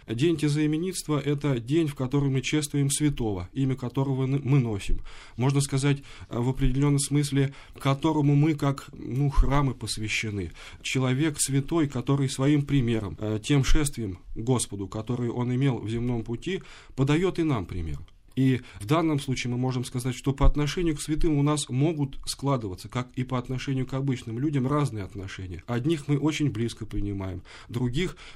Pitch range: 115-145 Hz